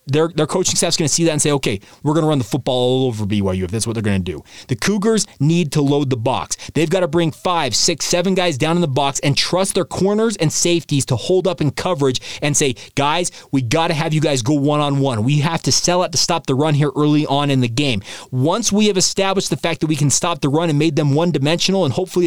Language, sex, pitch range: English, male, 135-180 Hz